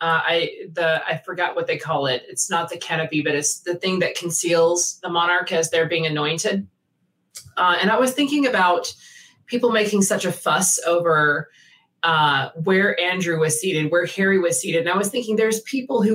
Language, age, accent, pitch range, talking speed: English, 30-49, American, 165-200 Hz, 195 wpm